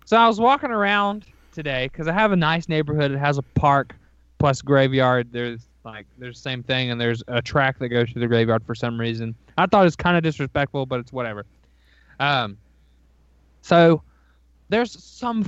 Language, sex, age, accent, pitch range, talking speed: English, male, 20-39, American, 120-180 Hz, 195 wpm